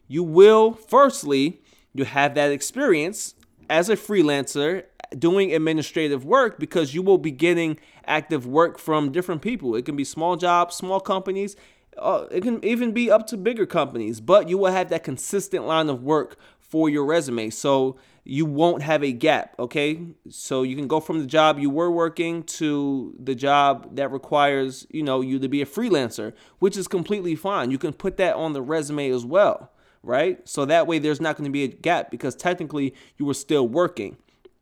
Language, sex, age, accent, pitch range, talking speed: English, male, 20-39, American, 135-190 Hz, 190 wpm